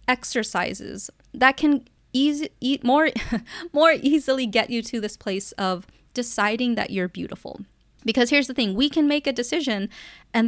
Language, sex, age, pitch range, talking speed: English, female, 20-39, 205-265 Hz, 160 wpm